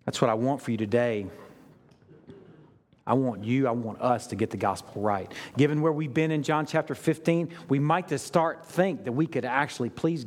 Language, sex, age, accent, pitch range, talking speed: English, male, 50-69, American, 120-165 Hz, 210 wpm